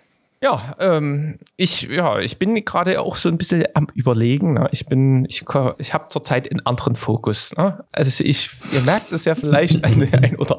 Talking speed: 195 wpm